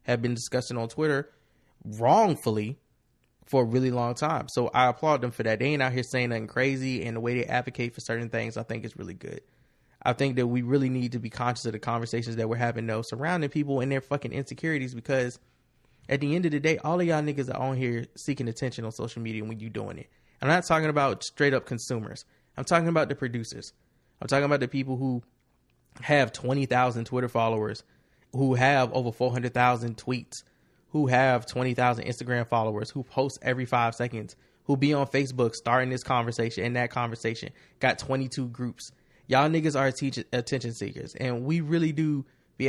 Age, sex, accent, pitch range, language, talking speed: 20-39, male, American, 120-145 Hz, English, 200 wpm